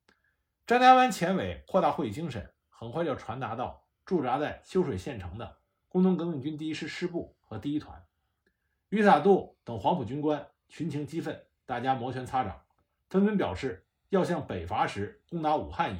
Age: 50-69